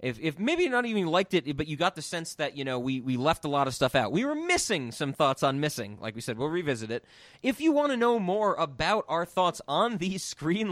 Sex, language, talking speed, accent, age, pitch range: male, English, 275 wpm, American, 30-49, 130-185 Hz